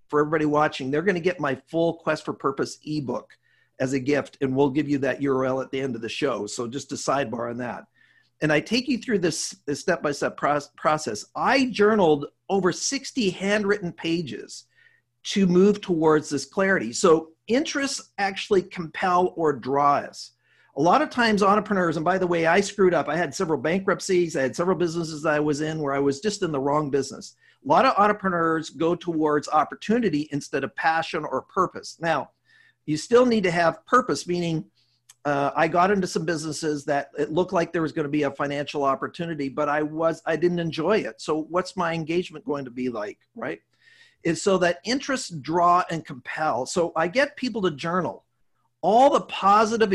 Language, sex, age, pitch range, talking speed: English, male, 50-69, 145-190 Hz, 190 wpm